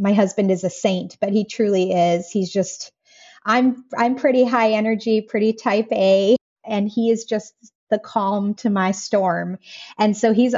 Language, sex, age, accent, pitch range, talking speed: English, female, 30-49, American, 195-235 Hz, 175 wpm